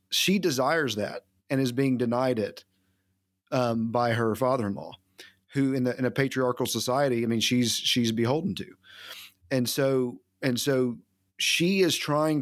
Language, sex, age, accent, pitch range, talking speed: English, male, 40-59, American, 115-135 Hz, 155 wpm